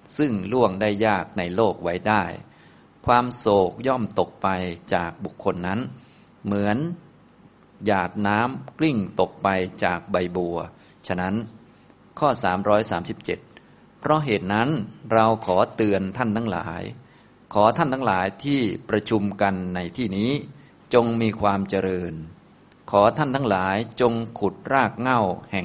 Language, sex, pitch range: Thai, male, 95-115 Hz